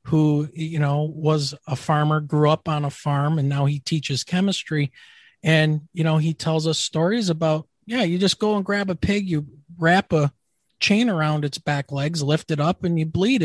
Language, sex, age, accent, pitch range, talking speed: English, male, 40-59, American, 150-190 Hz, 205 wpm